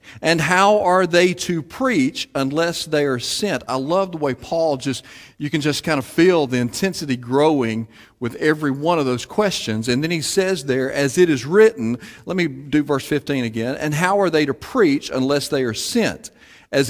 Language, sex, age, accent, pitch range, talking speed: English, male, 40-59, American, 115-150 Hz, 200 wpm